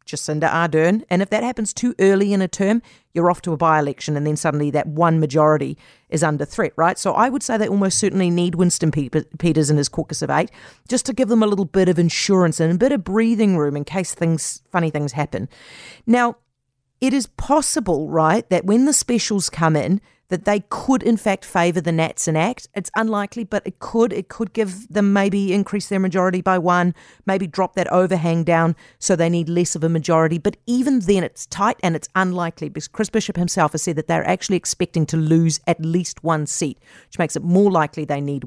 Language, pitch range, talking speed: English, 160-205 Hz, 220 wpm